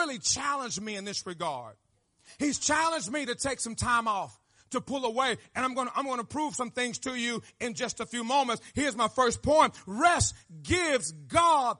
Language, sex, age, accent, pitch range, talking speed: English, male, 40-59, American, 230-290 Hz, 210 wpm